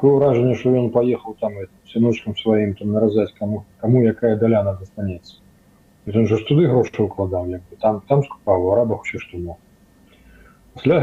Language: Russian